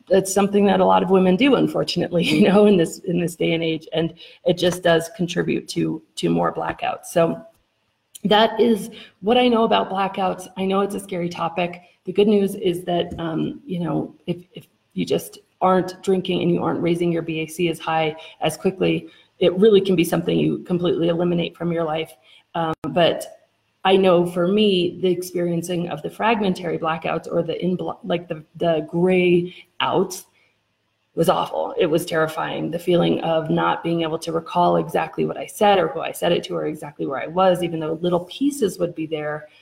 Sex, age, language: female, 30-49, English